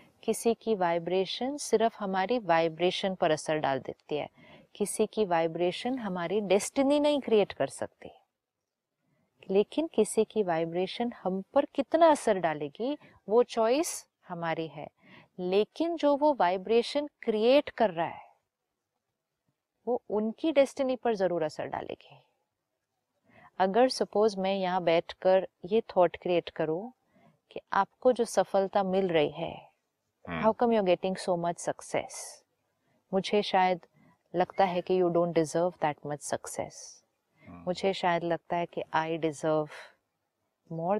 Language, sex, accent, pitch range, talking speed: Hindi, female, native, 170-225 Hz, 130 wpm